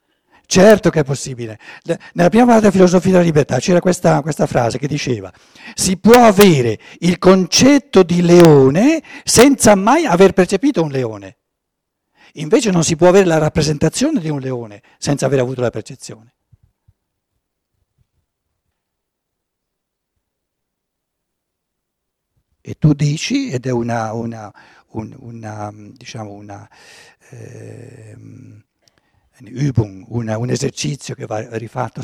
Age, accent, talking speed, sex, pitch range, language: 60-79, native, 110 wpm, male, 110-165 Hz, Italian